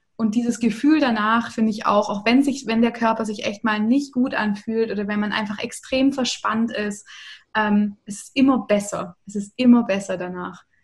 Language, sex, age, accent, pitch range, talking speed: German, female, 20-39, German, 210-255 Hz, 200 wpm